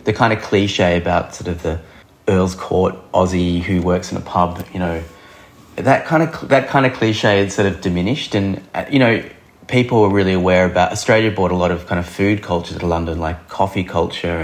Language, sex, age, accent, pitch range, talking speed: English, male, 30-49, Australian, 90-105 Hz, 210 wpm